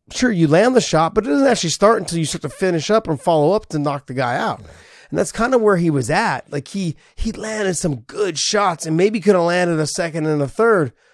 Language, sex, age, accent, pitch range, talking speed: English, male, 30-49, American, 120-165 Hz, 265 wpm